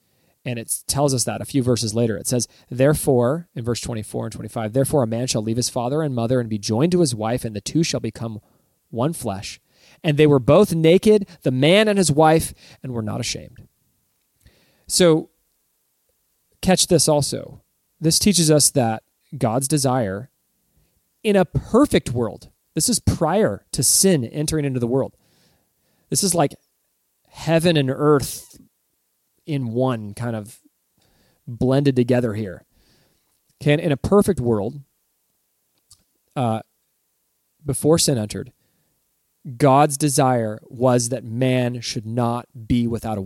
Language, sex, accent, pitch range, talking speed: English, male, American, 110-150 Hz, 150 wpm